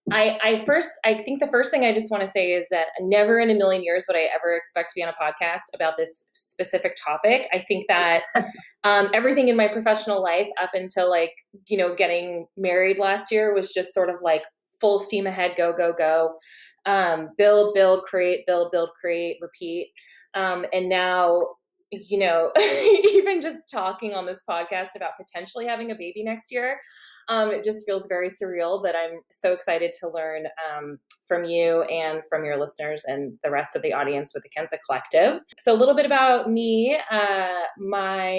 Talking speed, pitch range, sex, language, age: 195 wpm, 170-215 Hz, female, English, 20-39